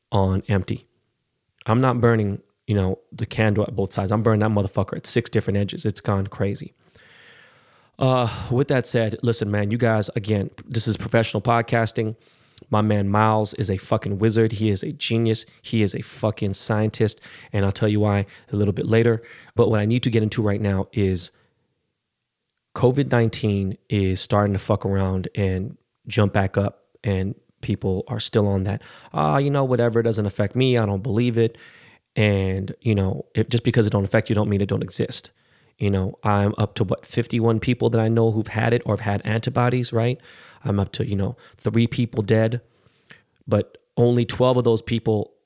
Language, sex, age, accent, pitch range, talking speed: English, male, 20-39, American, 100-120 Hz, 190 wpm